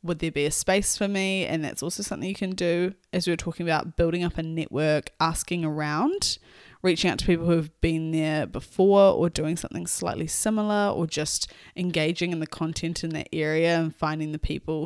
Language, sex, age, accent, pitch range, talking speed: English, female, 10-29, Australian, 150-180 Hz, 210 wpm